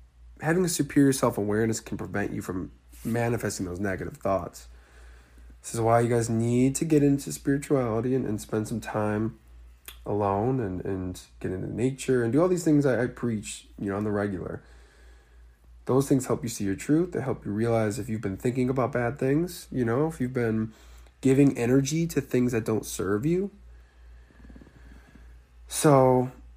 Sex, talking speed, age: male, 175 wpm, 20-39